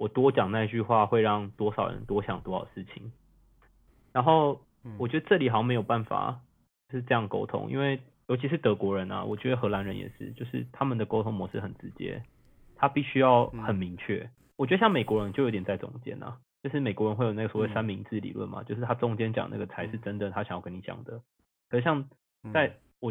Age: 20-39